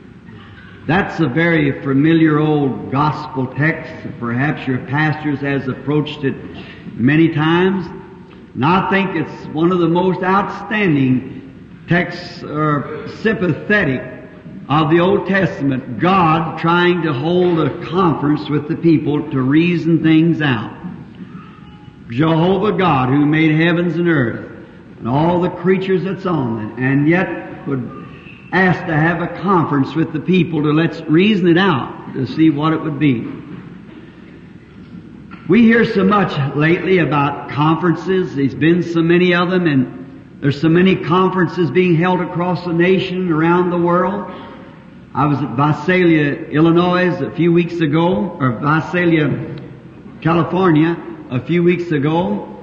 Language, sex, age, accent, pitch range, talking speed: English, male, 60-79, American, 150-180 Hz, 140 wpm